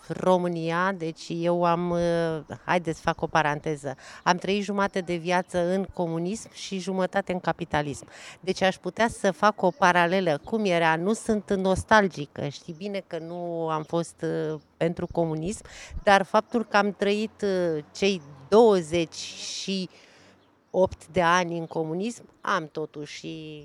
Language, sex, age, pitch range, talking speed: Romanian, female, 40-59, 170-210 Hz, 135 wpm